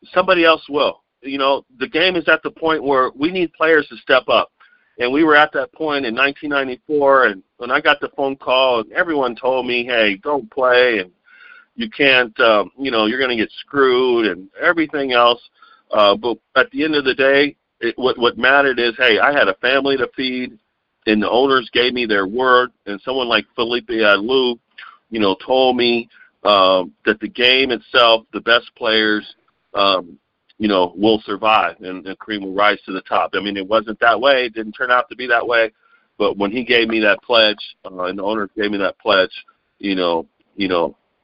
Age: 50-69